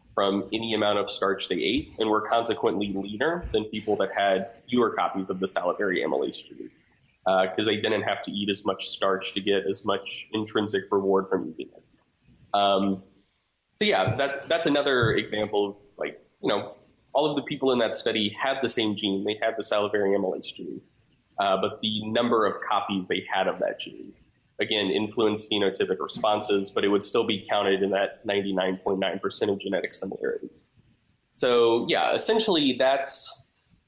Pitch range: 100-115 Hz